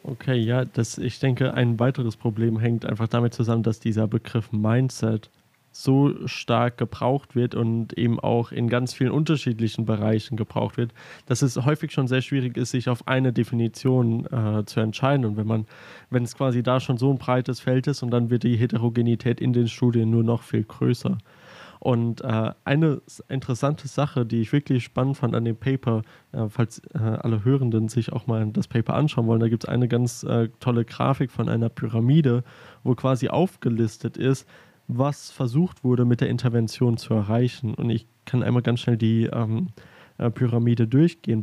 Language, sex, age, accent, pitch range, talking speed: German, male, 20-39, German, 115-130 Hz, 185 wpm